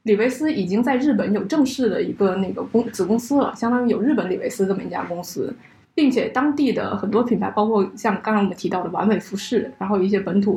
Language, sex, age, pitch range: Chinese, female, 20-39, 200-245 Hz